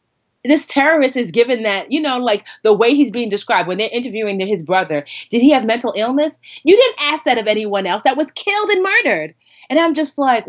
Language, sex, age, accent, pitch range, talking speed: English, female, 30-49, American, 180-260 Hz, 225 wpm